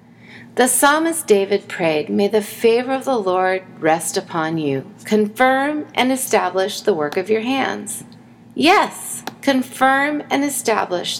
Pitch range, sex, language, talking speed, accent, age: 195-265 Hz, female, English, 135 wpm, American, 40-59